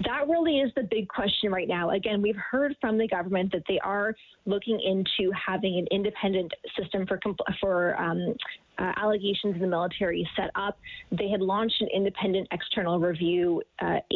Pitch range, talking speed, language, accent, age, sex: 185-210 Hz, 180 wpm, English, American, 20-39, female